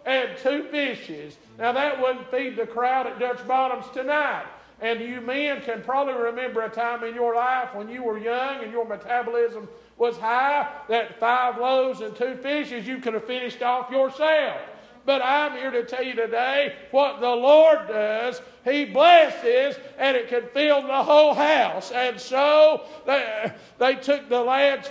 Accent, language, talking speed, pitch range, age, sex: American, English, 175 wpm, 245-290 Hz, 50-69, male